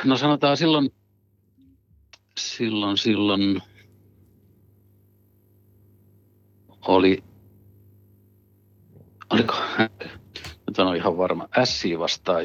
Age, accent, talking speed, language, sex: 60-79, native, 60 wpm, Finnish, male